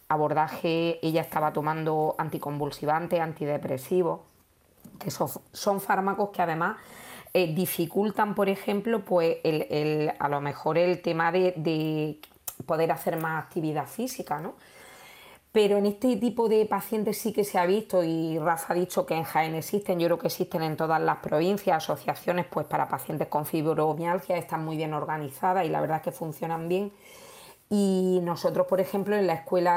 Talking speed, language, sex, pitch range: 165 wpm, Spanish, female, 160-185 Hz